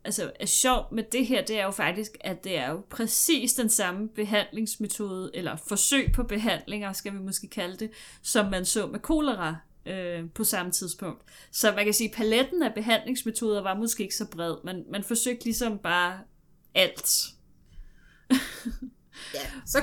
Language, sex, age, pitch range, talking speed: Danish, female, 30-49, 195-250 Hz, 170 wpm